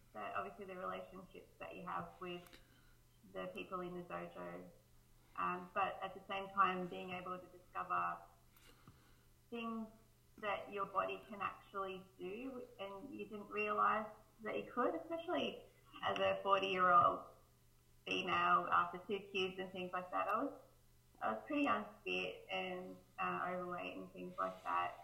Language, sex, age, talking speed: English, female, 30-49, 145 wpm